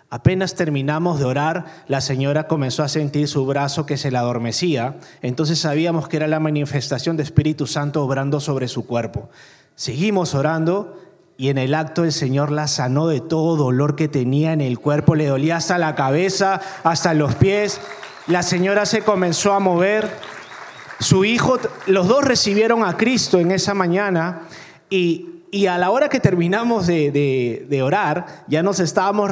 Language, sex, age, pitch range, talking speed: Spanish, male, 30-49, 145-190 Hz, 170 wpm